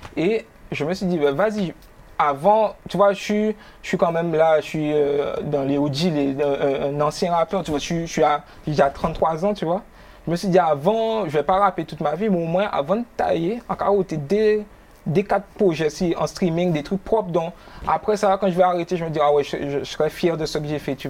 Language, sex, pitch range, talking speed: French, male, 155-195 Hz, 245 wpm